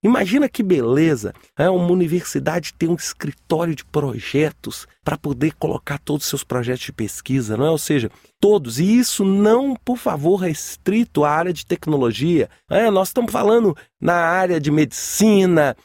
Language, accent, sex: English, Brazilian, male